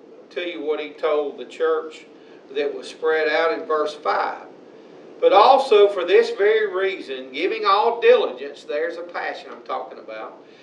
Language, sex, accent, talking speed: English, male, American, 165 wpm